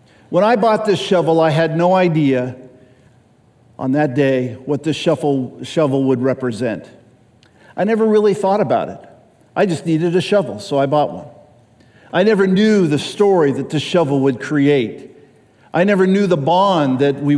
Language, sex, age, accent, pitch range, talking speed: English, male, 50-69, American, 130-175 Hz, 170 wpm